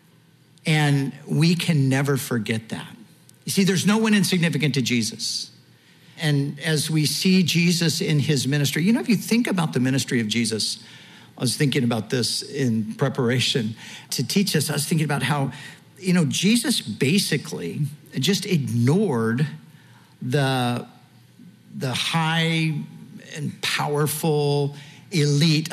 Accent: American